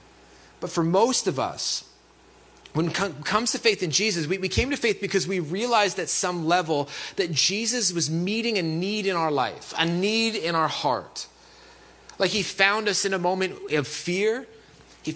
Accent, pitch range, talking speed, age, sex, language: American, 170-205 Hz, 180 wpm, 30-49, male, English